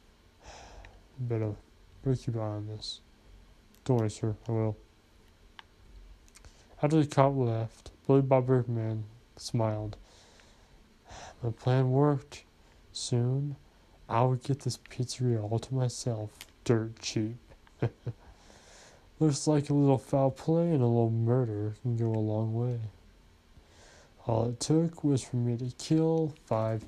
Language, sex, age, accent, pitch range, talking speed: English, male, 20-39, American, 100-130 Hz, 125 wpm